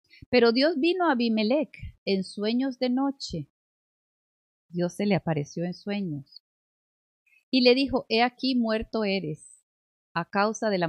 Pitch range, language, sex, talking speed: 185-250 Hz, Spanish, female, 145 wpm